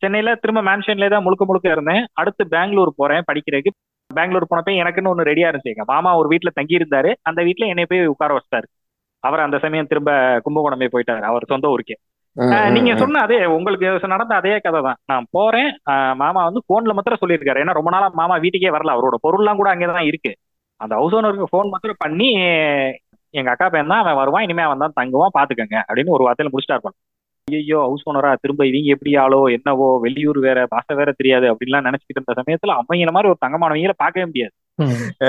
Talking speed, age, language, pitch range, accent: 175 wpm, 20-39, Tamil, 140-195 Hz, native